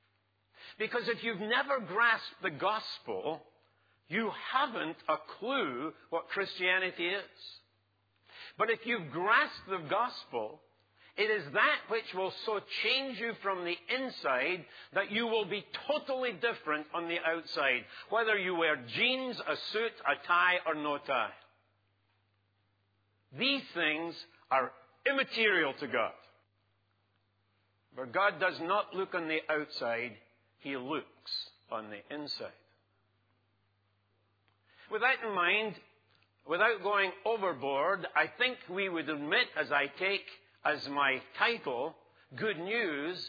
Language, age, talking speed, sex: English, 60-79, 125 wpm, male